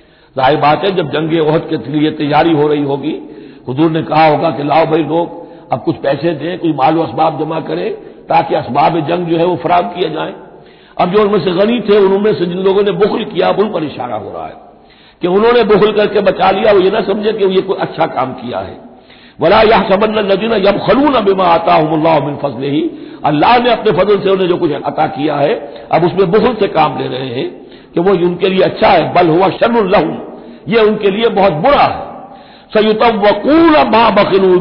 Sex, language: male, Hindi